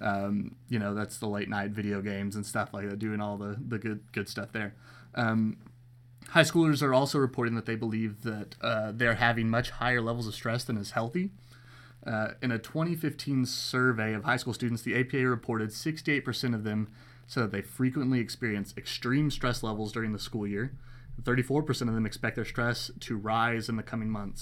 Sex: male